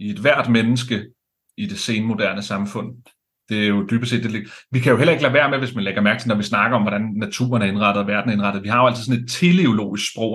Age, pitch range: 30-49, 110-140 Hz